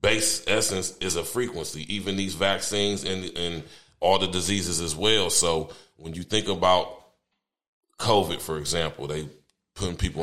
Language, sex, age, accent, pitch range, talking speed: English, male, 30-49, American, 75-95 Hz, 155 wpm